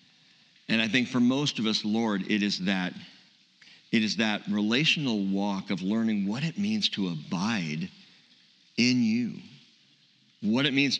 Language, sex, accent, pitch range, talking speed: English, male, American, 110-175 Hz, 155 wpm